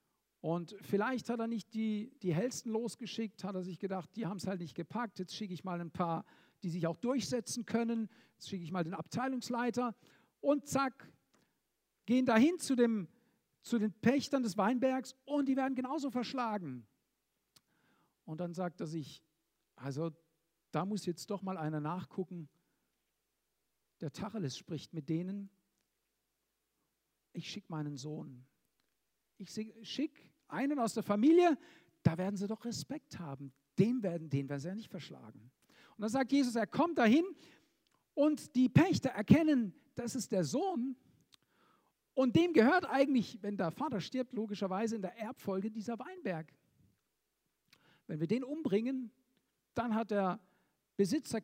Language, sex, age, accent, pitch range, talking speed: German, male, 50-69, German, 175-245 Hz, 150 wpm